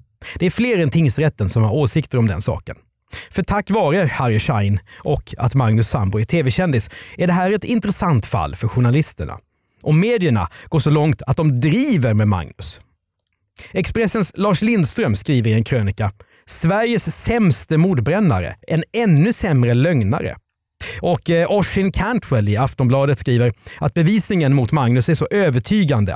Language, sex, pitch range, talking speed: Swedish, male, 105-170 Hz, 155 wpm